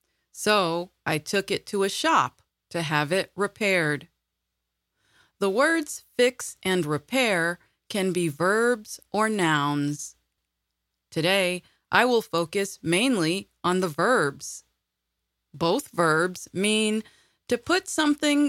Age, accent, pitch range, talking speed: 30-49, American, 160-220 Hz, 115 wpm